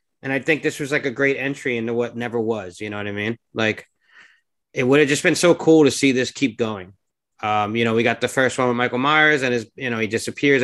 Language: English